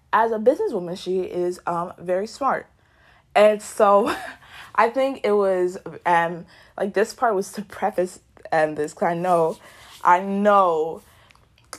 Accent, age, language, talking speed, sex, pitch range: American, 20-39, English, 145 wpm, female, 175-265 Hz